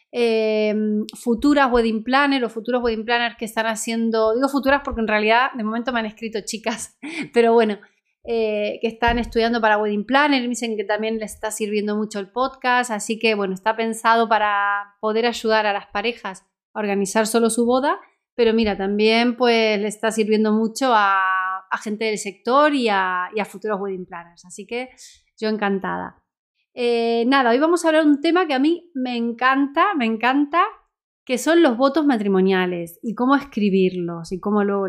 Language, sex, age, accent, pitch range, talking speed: Spanish, female, 30-49, Spanish, 215-265 Hz, 185 wpm